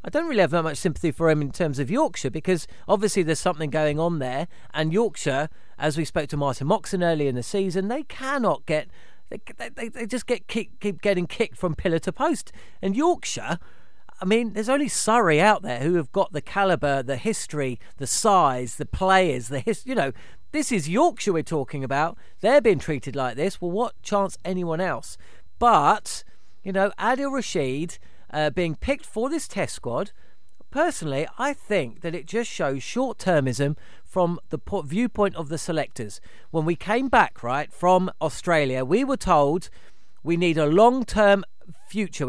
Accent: British